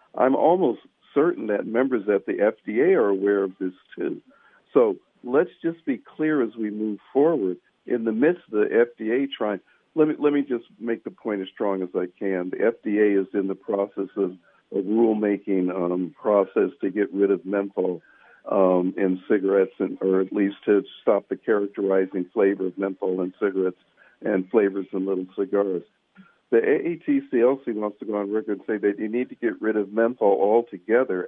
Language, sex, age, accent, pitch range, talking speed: English, male, 60-79, American, 95-115 Hz, 185 wpm